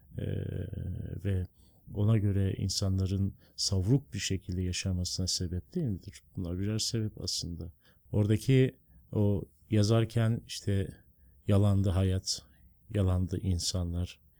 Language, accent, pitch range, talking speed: Turkish, native, 90-115 Hz, 100 wpm